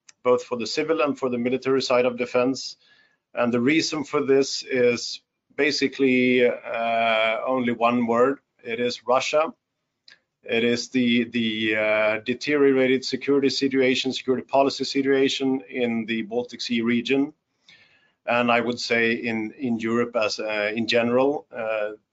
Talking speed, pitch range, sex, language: 145 wpm, 115-135 Hz, male, English